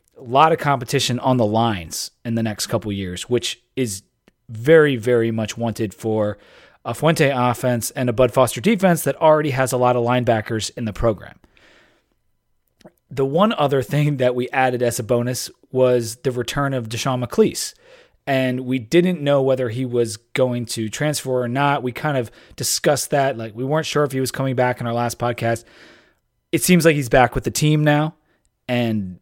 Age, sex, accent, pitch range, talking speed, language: 30-49, male, American, 115-140 Hz, 190 wpm, English